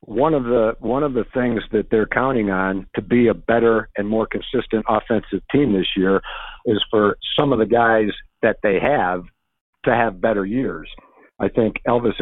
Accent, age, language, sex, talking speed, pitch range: American, 50-69, English, male, 185 wpm, 110-125 Hz